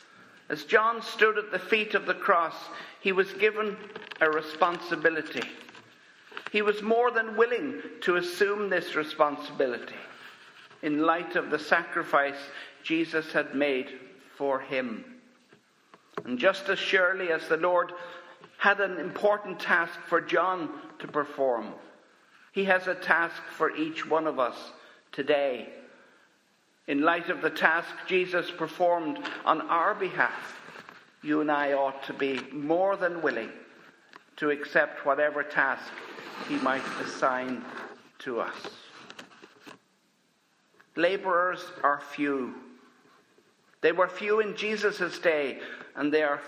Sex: male